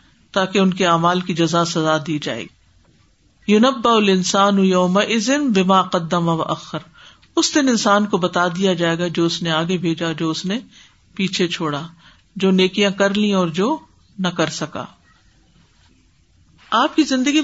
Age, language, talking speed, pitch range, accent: 50-69, English, 160 wpm, 180-230 Hz, Indian